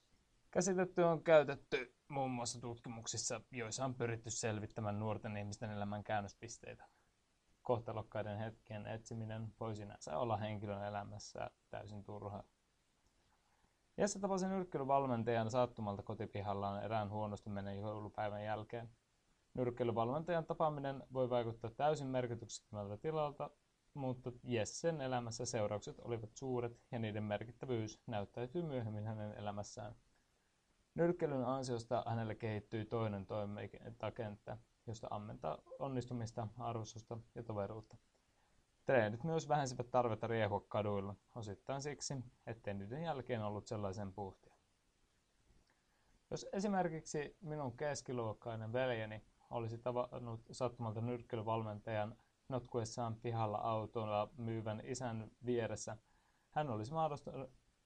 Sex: male